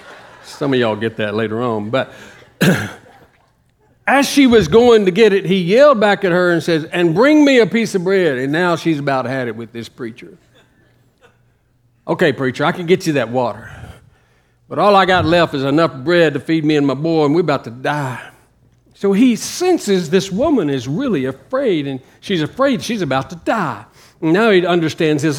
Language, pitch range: English, 130-215 Hz